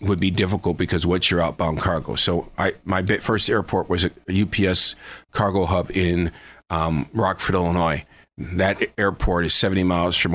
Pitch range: 85-100 Hz